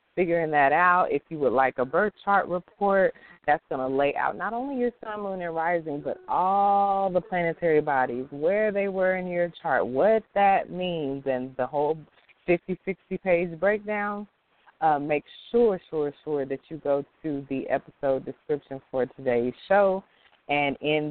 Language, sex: English, female